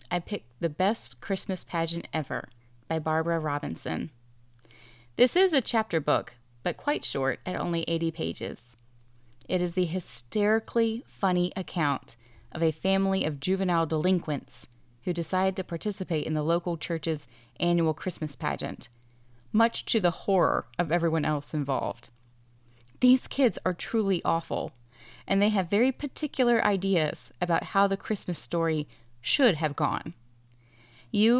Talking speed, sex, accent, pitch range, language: 140 wpm, female, American, 125-190 Hz, English